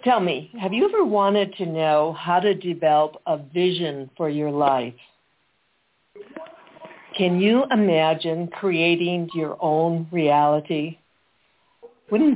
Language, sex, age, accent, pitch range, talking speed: English, female, 60-79, American, 155-200 Hz, 115 wpm